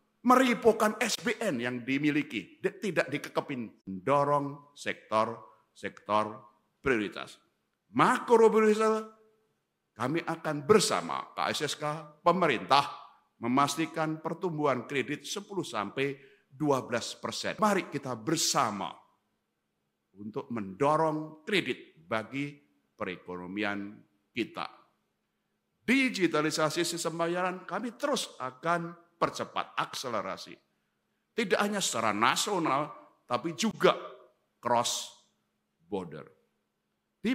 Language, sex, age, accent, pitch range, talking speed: Indonesian, male, 50-69, native, 125-180 Hz, 75 wpm